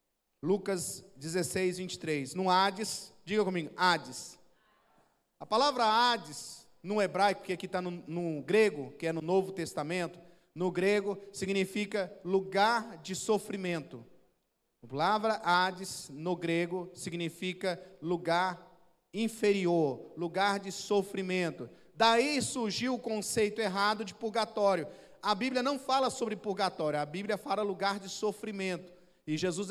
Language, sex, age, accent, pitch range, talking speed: Portuguese, male, 40-59, Brazilian, 170-215 Hz, 125 wpm